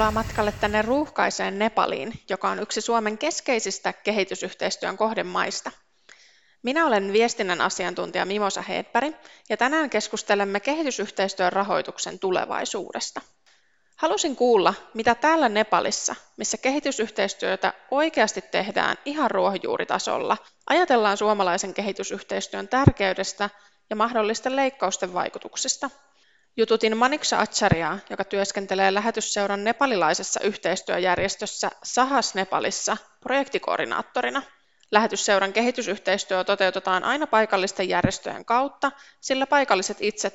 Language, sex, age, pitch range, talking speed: Finnish, female, 20-39, 195-245 Hz, 95 wpm